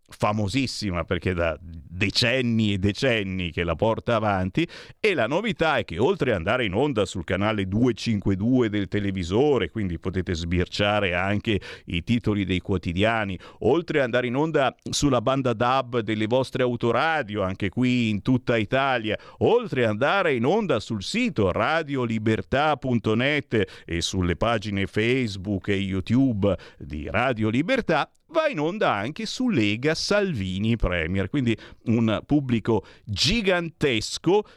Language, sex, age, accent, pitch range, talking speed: Italian, male, 50-69, native, 95-130 Hz, 135 wpm